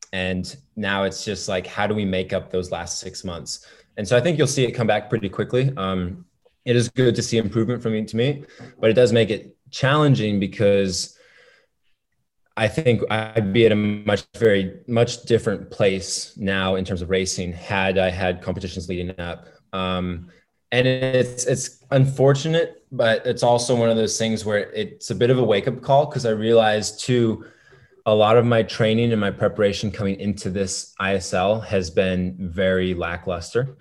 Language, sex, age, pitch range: English, male, 20-39, 95-120 Hz